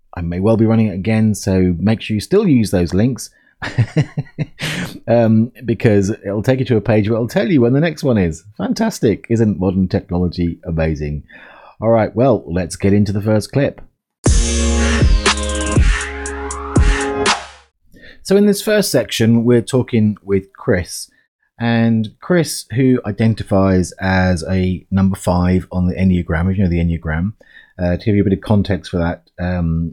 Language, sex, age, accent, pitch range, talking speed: English, male, 30-49, British, 85-115 Hz, 165 wpm